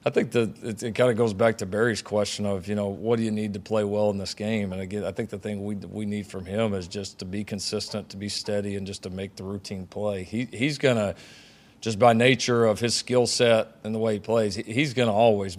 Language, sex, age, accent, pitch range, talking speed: English, male, 40-59, American, 100-115 Hz, 275 wpm